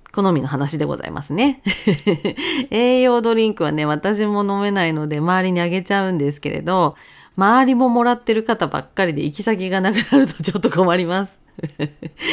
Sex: female